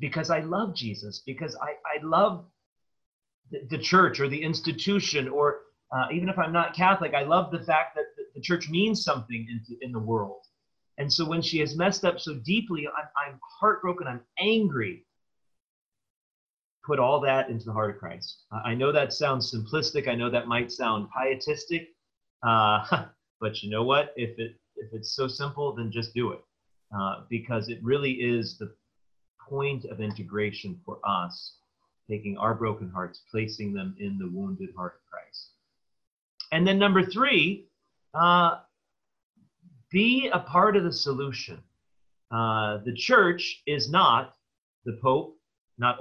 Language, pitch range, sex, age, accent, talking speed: English, 115-175 Hz, male, 30-49, American, 165 wpm